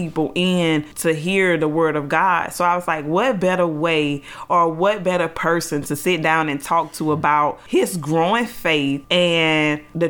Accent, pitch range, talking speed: American, 155-180 Hz, 185 wpm